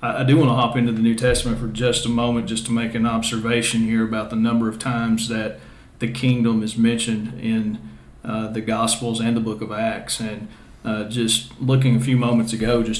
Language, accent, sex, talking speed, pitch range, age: English, American, male, 215 wpm, 115-125 Hz, 40-59